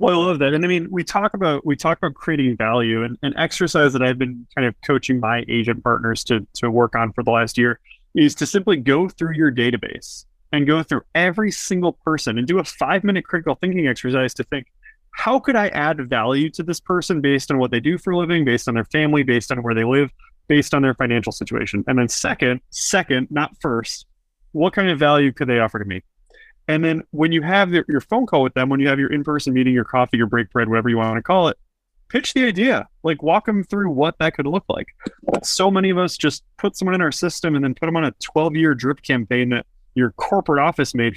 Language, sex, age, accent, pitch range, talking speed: English, male, 30-49, American, 125-165 Hz, 245 wpm